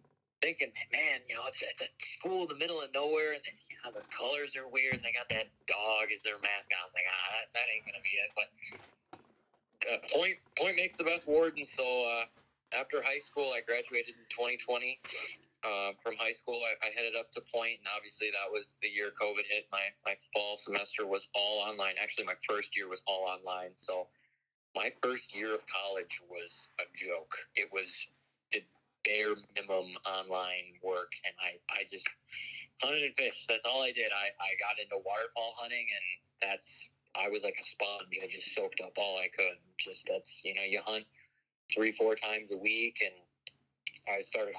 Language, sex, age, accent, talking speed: English, male, 30-49, American, 200 wpm